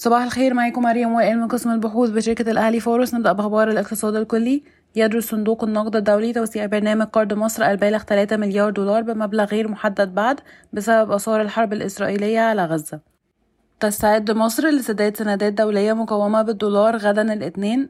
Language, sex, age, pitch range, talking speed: Arabic, female, 20-39, 205-220 Hz, 155 wpm